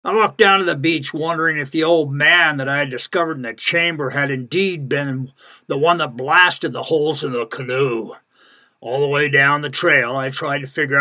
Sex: male